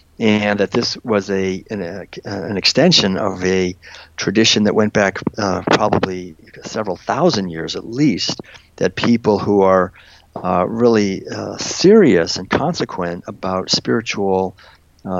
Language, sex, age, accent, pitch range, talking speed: English, male, 50-69, American, 95-110 Hz, 140 wpm